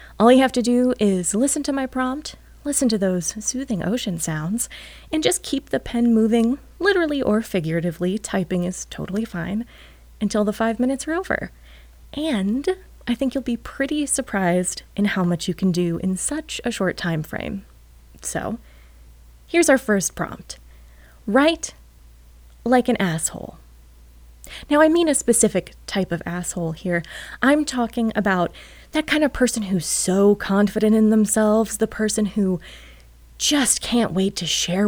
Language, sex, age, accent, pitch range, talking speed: English, female, 20-39, American, 180-255 Hz, 160 wpm